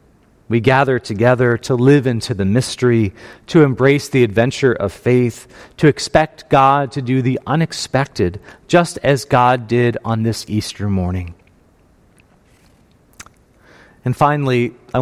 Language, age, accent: English, 40-59, American